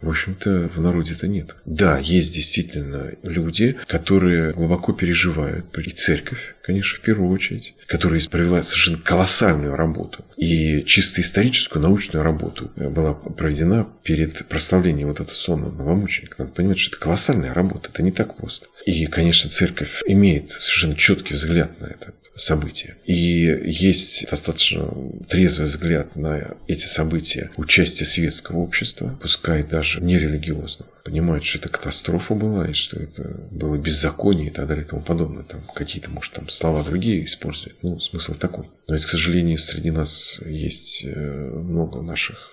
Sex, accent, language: male, native, Russian